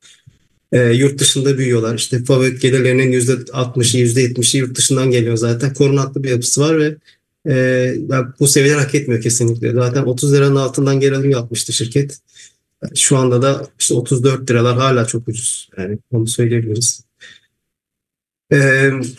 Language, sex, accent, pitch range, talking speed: English, male, Turkish, 120-140 Hz, 150 wpm